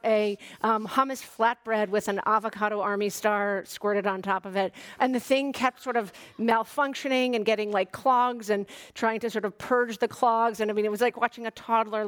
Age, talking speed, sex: 40-59, 210 wpm, female